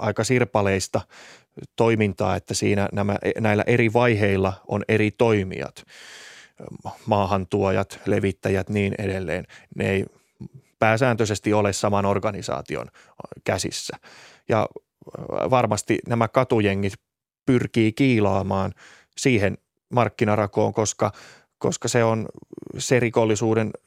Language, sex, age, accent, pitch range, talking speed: Finnish, male, 20-39, native, 100-115 Hz, 90 wpm